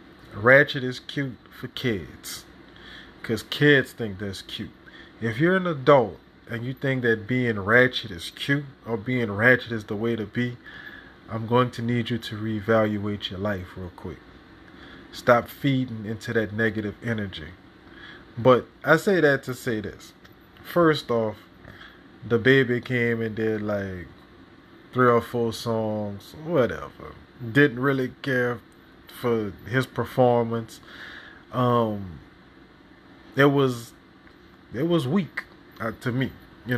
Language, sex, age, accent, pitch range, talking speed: English, male, 20-39, American, 110-125 Hz, 135 wpm